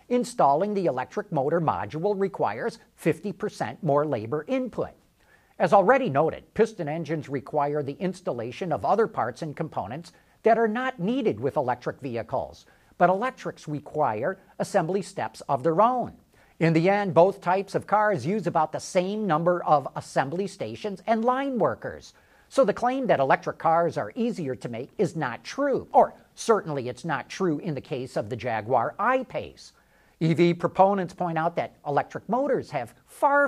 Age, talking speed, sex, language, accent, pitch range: 50-69, 160 wpm, male, English, American, 150-215 Hz